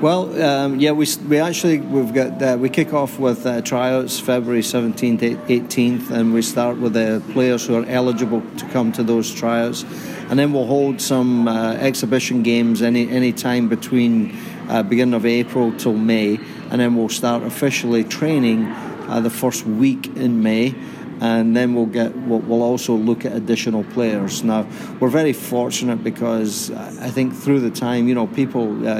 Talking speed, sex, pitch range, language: 180 wpm, male, 110-125 Hz, English